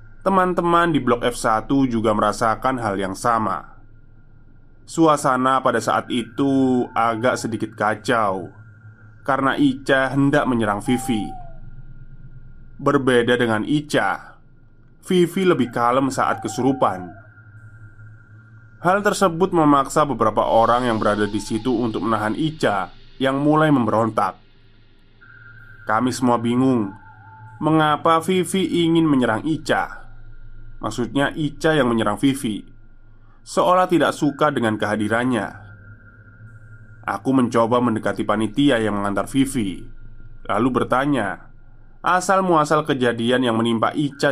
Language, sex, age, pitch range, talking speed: Indonesian, male, 20-39, 110-140 Hz, 105 wpm